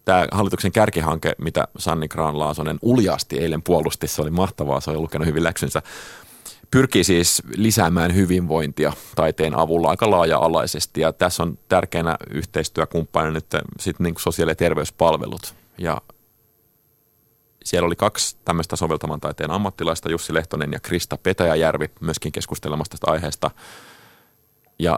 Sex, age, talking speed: male, 30-49, 125 wpm